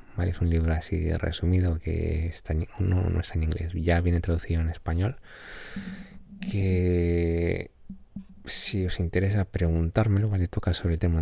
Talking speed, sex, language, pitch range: 155 wpm, male, Spanish, 80-100 Hz